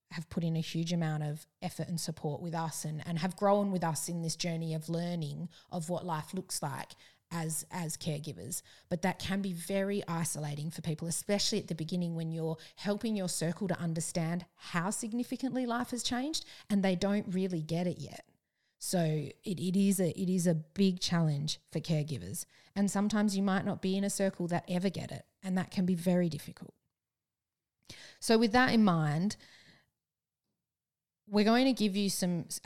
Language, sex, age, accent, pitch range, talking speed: English, female, 30-49, Australian, 165-200 Hz, 190 wpm